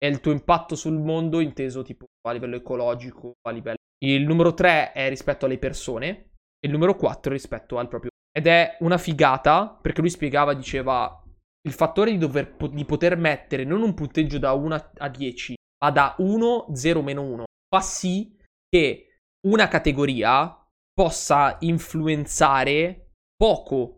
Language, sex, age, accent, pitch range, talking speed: Italian, male, 20-39, native, 125-160 Hz, 160 wpm